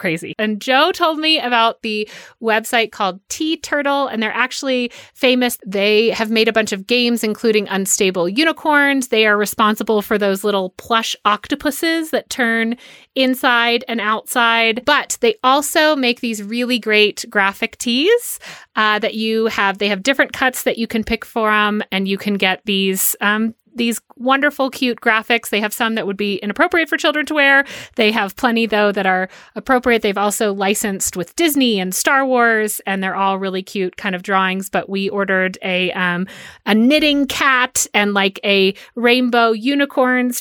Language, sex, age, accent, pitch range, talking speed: English, female, 30-49, American, 200-250 Hz, 175 wpm